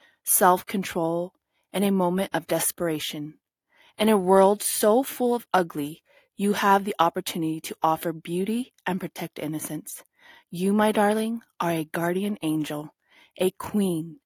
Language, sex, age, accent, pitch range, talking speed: English, female, 30-49, American, 160-215 Hz, 135 wpm